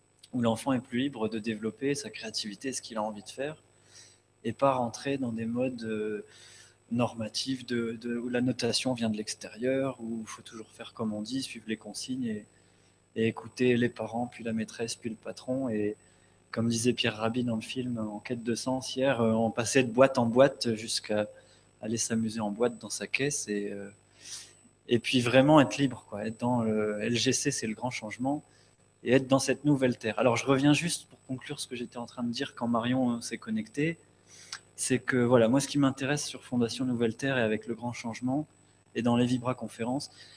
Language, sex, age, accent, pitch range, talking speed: French, male, 20-39, French, 110-130 Hz, 200 wpm